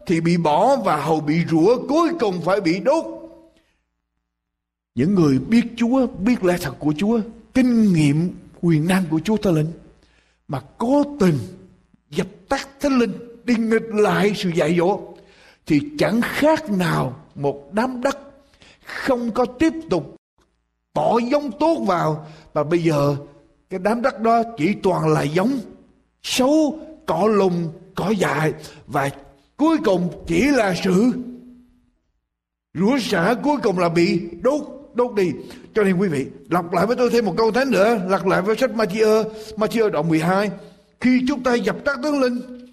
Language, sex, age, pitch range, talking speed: Vietnamese, male, 60-79, 175-250 Hz, 160 wpm